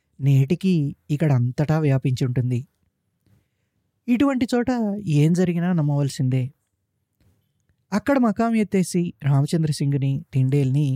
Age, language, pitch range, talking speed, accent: 20-39, Telugu, 125-160 Hz, 90 wpm, native